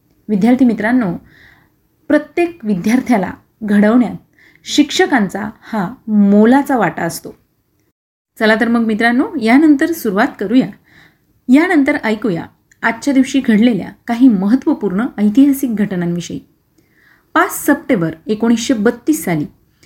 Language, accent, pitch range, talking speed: Marathi, native, 205-275 Hz, 90 wpm